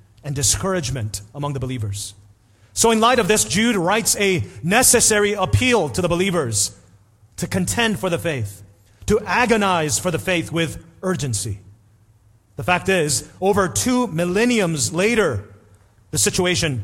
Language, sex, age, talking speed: English, male, 30-49, 140 wpm